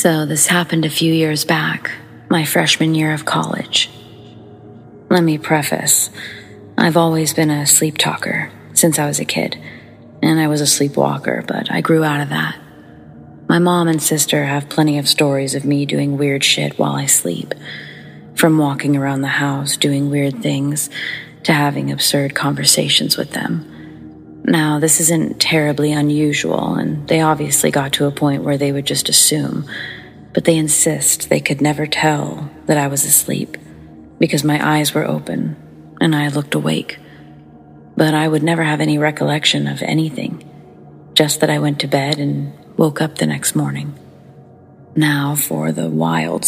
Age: 30-49